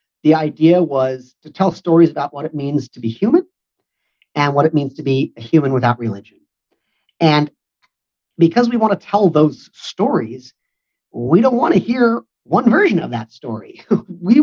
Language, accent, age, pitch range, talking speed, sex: English, American, 40-59, 130-190 Hz, 175 wpm, male